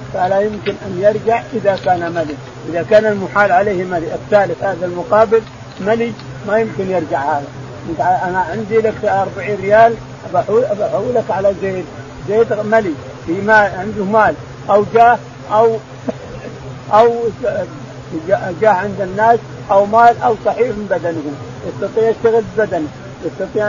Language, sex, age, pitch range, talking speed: Arabic, male, 50-69, 170-220 Hz, 130 wpm